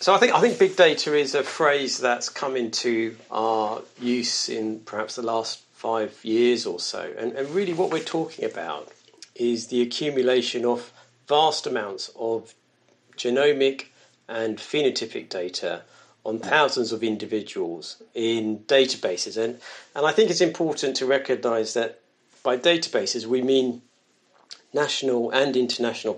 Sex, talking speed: male, 145 wpm